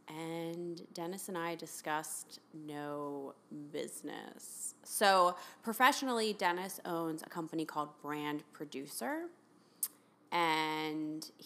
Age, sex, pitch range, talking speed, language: 20-39, female, 155-195 Hz, 90 wpm, English